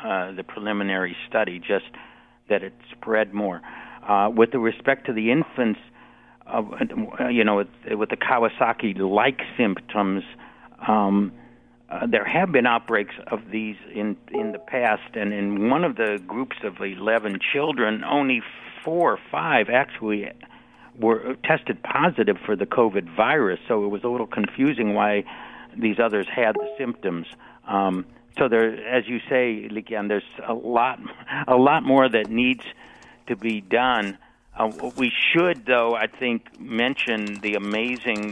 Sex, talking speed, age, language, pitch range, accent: male, 150 wpm, 60-79, English, 100-120 Hz, American